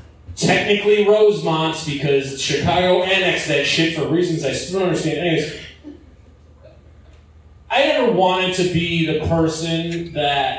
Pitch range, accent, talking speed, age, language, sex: 130-205 Hz, American, 125 wpm, 30-49, English, male